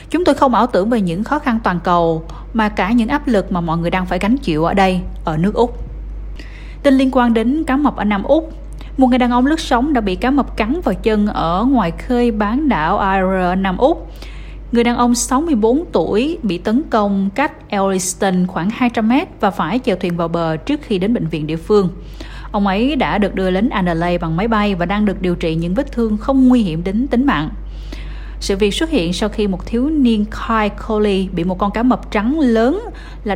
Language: Vietnamese